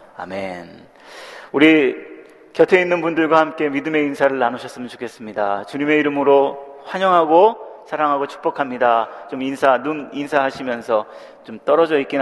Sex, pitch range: male, 130-180 Hz